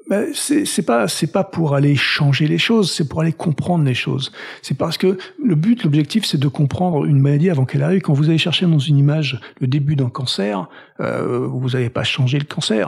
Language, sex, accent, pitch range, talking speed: French, male, French, 135-170 Hz, 230 wpm